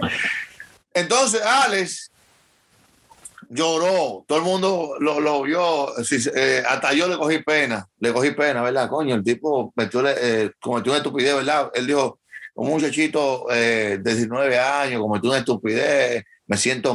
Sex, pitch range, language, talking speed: male, 125-160 Hz, English, 140 wpm